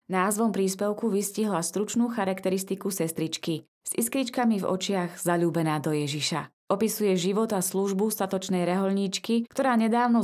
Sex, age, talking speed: female, 20-39, 125 wpm